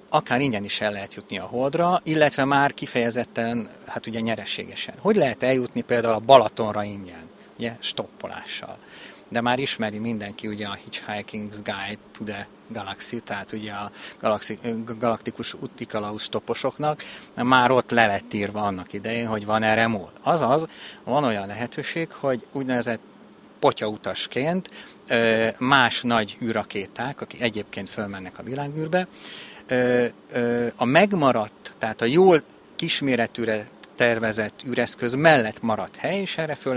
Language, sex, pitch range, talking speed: Hungarian, male, 105-130 Hz, 135 wpm